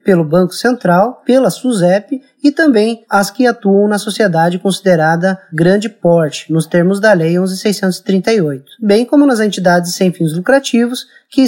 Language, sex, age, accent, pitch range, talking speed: Portuguese, male, 20-39, Brazilian, 175-230 Hz, 150 wpm